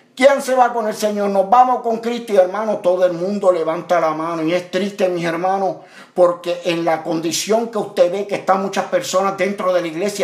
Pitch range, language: 175-220 Hz, Spanish